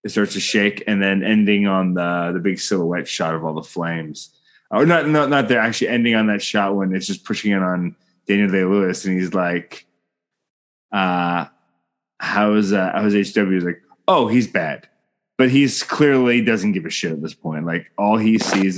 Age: 20-39